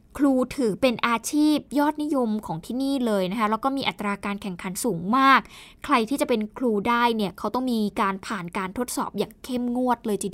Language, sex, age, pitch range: Thai, female, 20-39, 220-285 Hz